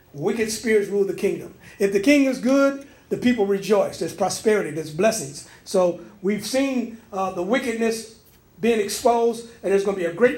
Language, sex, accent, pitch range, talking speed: English, male, American, 185-230 Hz, 185 wpm